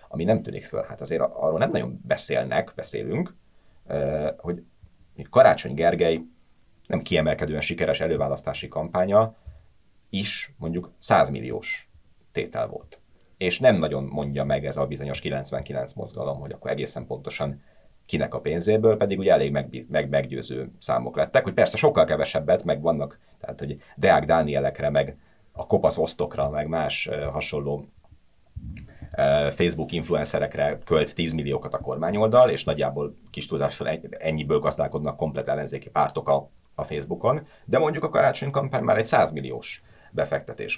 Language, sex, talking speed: Hungarian, male, 140 wpm